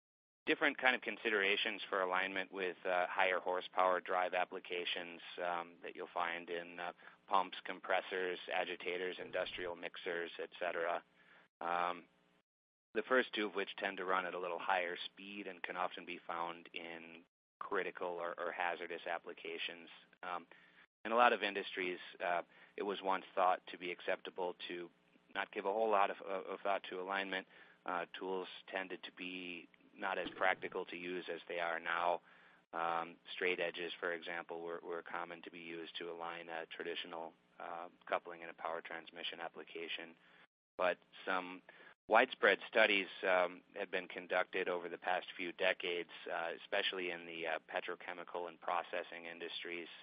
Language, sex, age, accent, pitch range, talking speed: English, male, 30-49, American, 85-95 Hz, 160 wpm